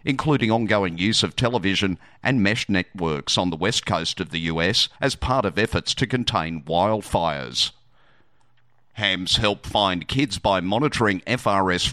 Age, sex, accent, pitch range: 50-69, male, Australian, 90-115 Hz